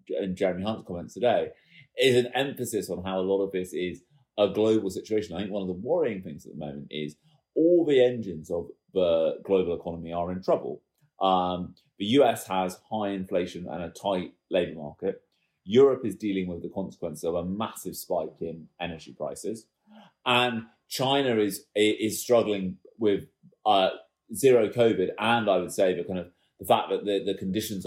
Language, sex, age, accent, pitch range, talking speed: English, male, 30-49, British, 95-120 Hz, 185 wpm